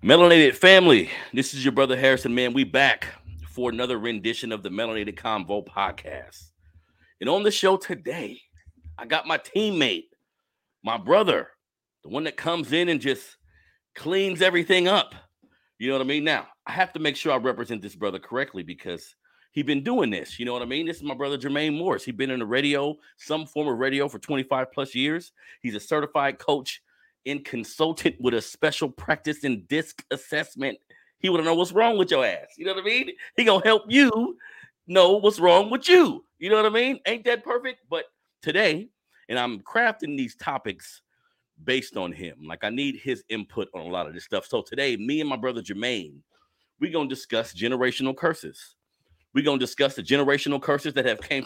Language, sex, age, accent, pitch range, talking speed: English, male, 40-59, American, 125-190 Hz, 200 wpm